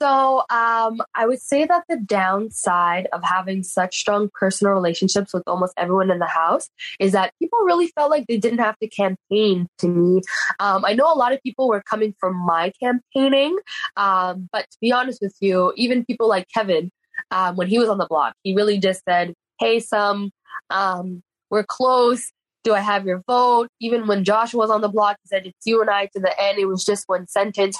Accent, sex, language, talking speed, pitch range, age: American, female, English, 210 wpm, 185-245 Hz, 10-29